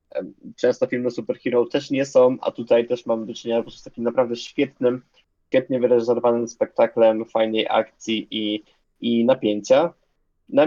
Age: 20-39